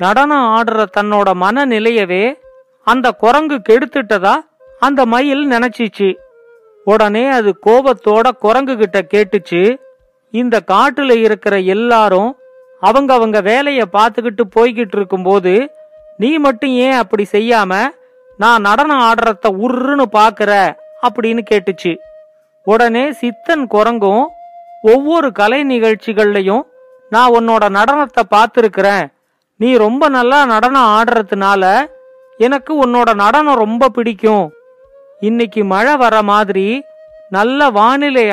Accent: native